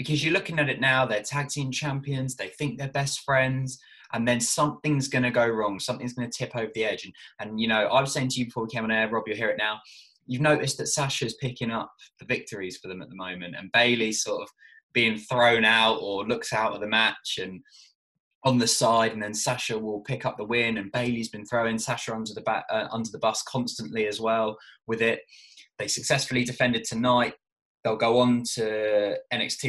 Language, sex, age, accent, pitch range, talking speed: English, male, 20-39, British, 110-135 Hz, 225 wpm